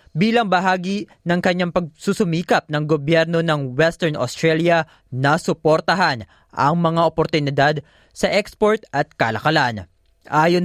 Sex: male